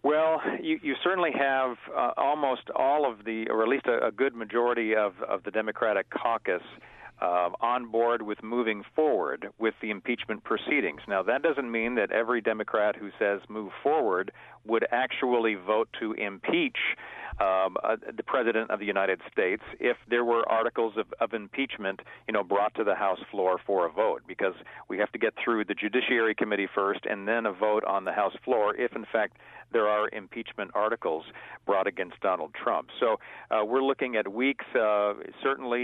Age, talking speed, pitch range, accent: 50-69, 185 wpm, 105-120 Hz, American